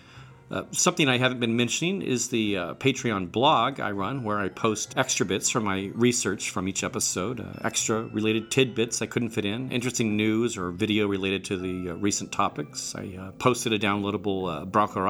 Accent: American